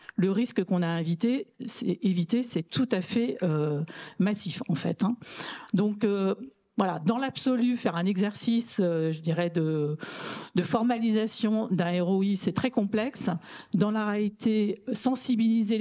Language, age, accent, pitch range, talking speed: French, 50-69, French, 180-230 Hz, 140 wpm